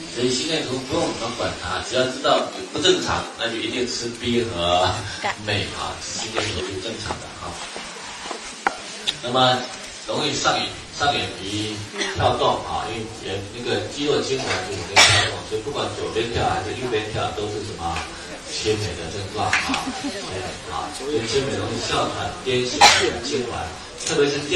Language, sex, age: Chinese, male, 30-49